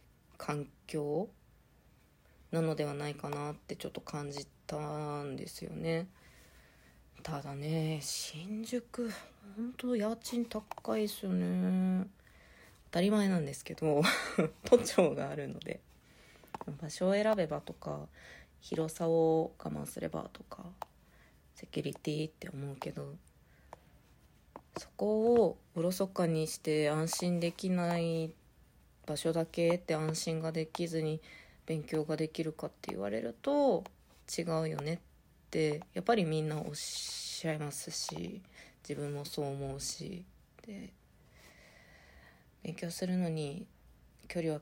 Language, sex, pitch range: Japanese, female, 140-170 Hz